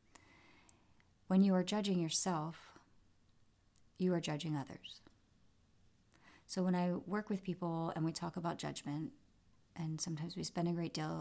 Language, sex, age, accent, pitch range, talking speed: English, female, 30-49, American, 150-175 Hz, 145 wpm